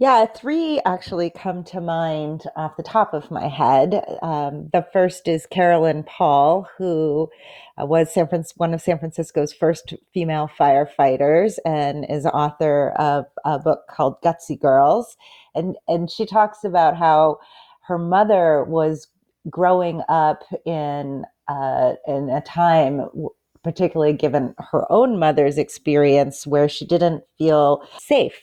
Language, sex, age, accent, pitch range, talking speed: English, female, 40-59, American, 145-175 Hz, 140 wpm